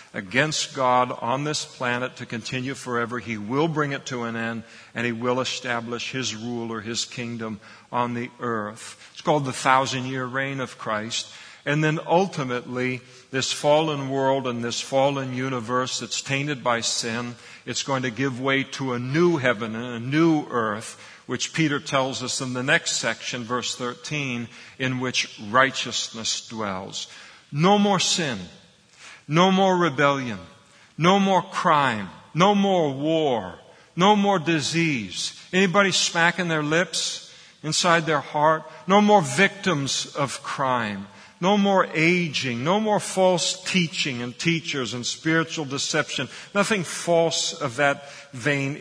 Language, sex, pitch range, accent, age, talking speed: English, male, 125-165 Hz, American, 50-69, 150 wpm